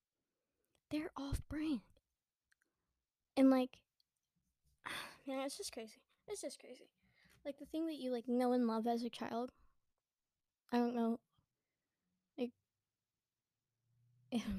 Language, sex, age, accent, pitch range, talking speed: English, female, 10-29, American, 225-260 Hz, 105 wpm